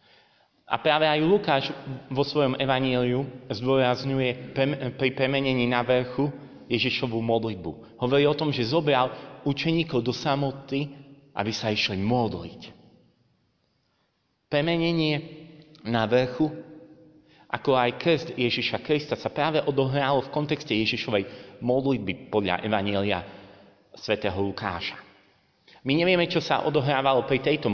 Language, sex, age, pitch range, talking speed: Slovak, male, 30-49, 105-140 Hz, 115 wpm